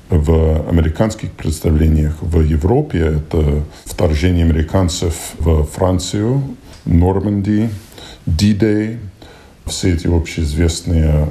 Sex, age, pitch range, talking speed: male, 40-59, 80-100 Hz, 80 wpm